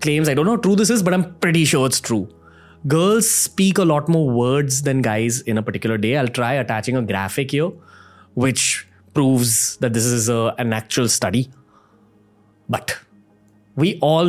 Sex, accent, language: male, Indian, English